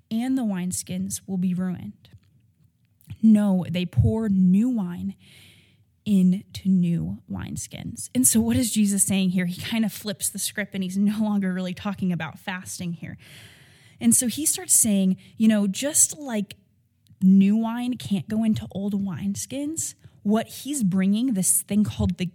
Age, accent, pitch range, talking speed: 20-39, American, 180-225 Hz, 160 wpm